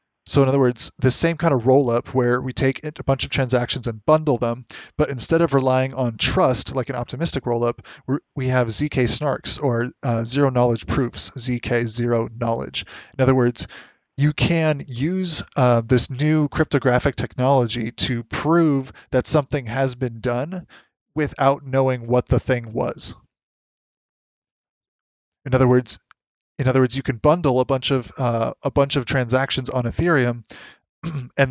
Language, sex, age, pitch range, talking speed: English, male, 20-39, 125-140 Hz, 160 wpm